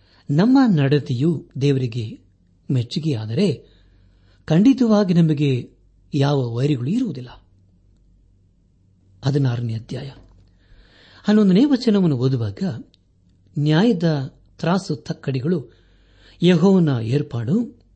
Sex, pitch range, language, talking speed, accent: male, 95-160 Hz, Kannada, 55 wpm, native